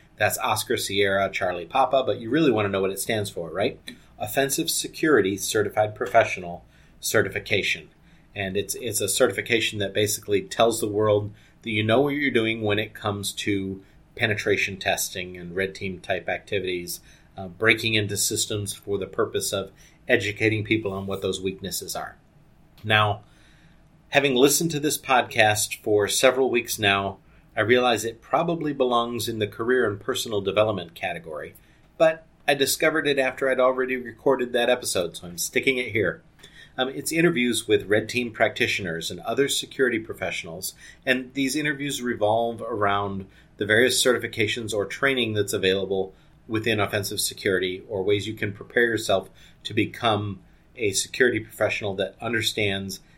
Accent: American